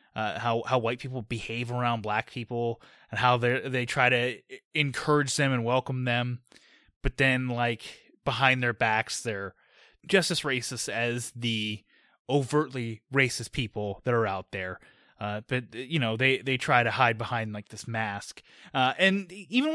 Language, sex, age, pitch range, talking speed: English, male, 20-39, 115-140 Hz, 165 wpm